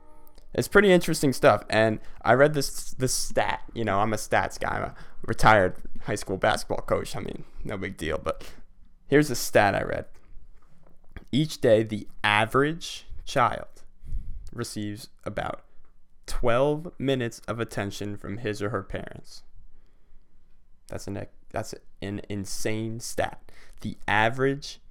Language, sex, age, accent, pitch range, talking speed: English, male, 20-39, American, 100-130 Hz, 140 wpm